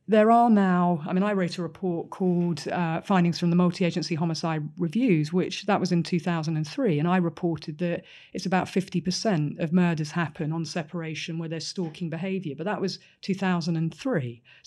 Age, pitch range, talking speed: 40-59, 165-195 Hz, 170 wpm